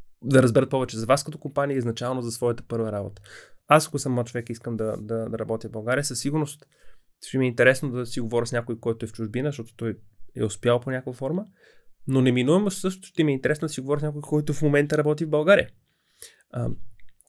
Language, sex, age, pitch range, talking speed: Bulgarian, male, 20-39, 115-140 Hz, 230 wpm